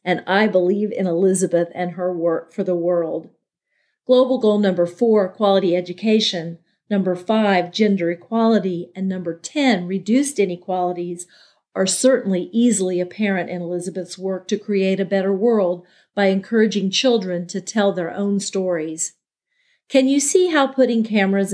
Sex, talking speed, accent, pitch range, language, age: female, 145 wpm, American, 180-215 Hz, English, 40-59